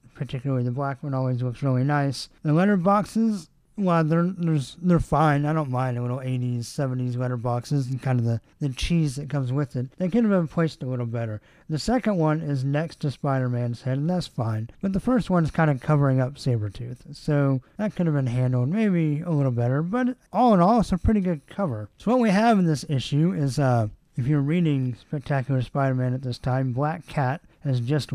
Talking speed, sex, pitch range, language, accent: 225 wpm, male, 130-170 Hz, English, American